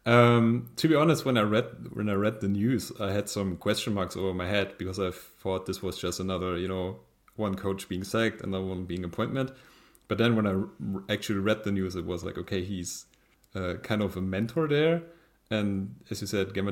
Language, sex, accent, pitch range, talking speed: English, male, German, 95-115 Hz, 220 wpm